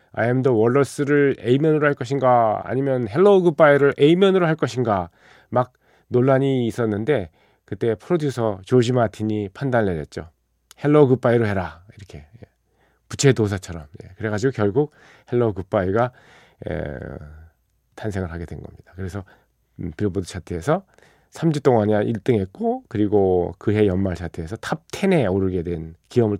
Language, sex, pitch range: Korean, male, 100-145 Hz